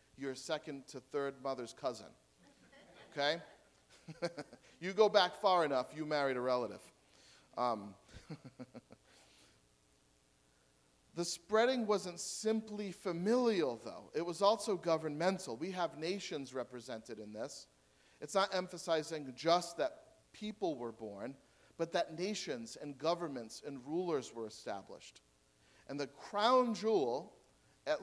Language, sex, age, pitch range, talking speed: English, male, 40-59, 120-175 Hz, 120 wpm